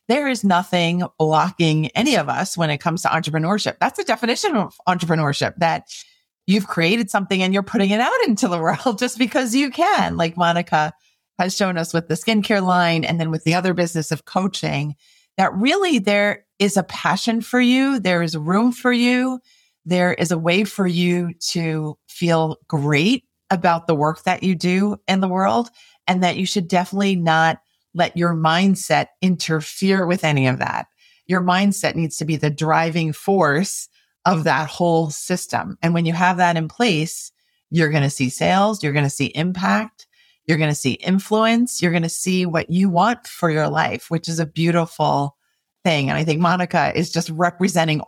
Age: 40-59